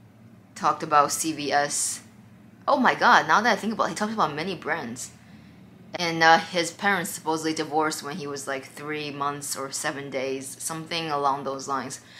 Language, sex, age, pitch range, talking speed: English, female, 20-39, 140-165 Hz, 175 wpm